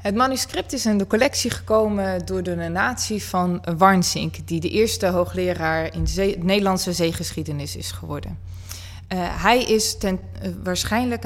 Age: 20-39